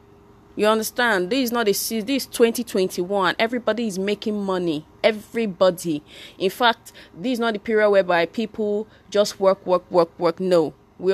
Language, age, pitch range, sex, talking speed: English, 20-39, 170-230 Hz, female, 160 wpm